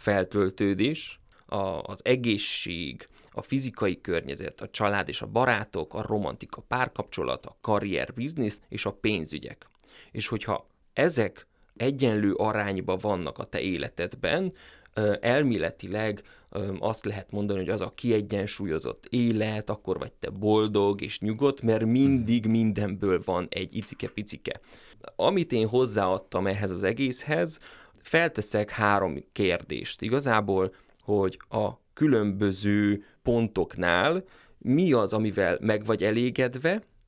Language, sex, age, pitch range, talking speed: Hungarian, male, 20-39, 100-125 Hz, 115 wpm